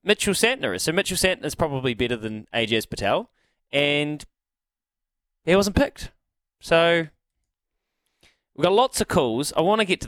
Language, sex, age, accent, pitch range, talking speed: English, male, 20-39, Australian, 130-170 Hz, 160 wpm